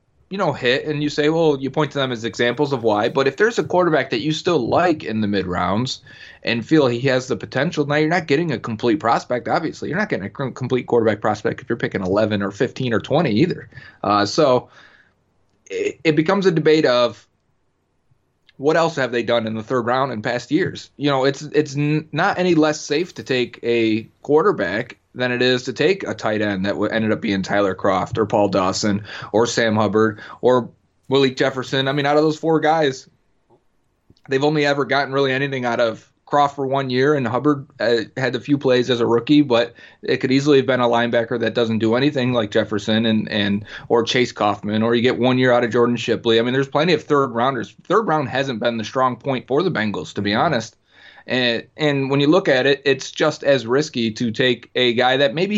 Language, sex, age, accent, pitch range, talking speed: English, male, 30-49, American, 115-150 Hz, 225 wpm